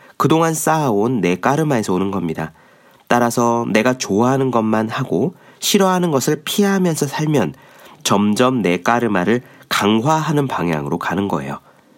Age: 40-59